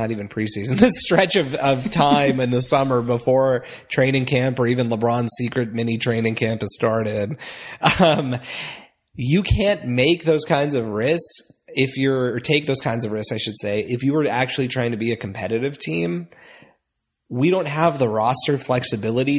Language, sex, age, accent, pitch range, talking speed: English, male, 20-39, American, 115-145 Hz, 180 wpm